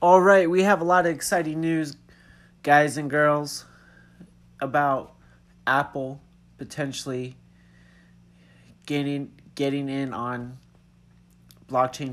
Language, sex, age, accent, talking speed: English, male, 30-49, American, 100 wpm